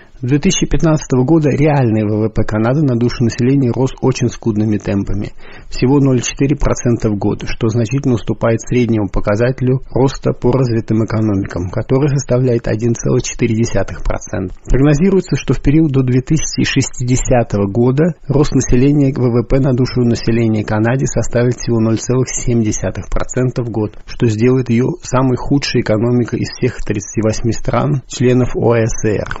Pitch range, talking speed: 115-135 Hz, 120 wpm